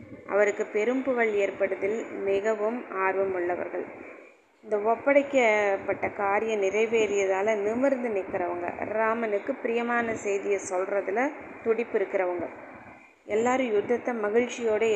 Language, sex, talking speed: Tamil, female, 90 wpm